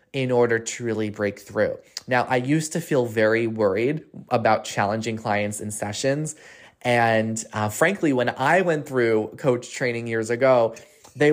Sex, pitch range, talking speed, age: male, 110-140 Hz, 160 wpm, 20-39